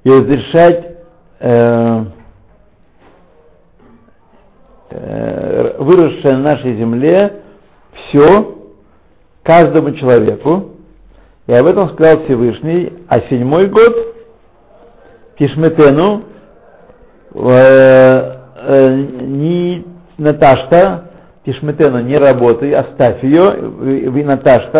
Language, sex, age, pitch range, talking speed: Russian, male, 60-79, 125-165 Hz, 75 wpm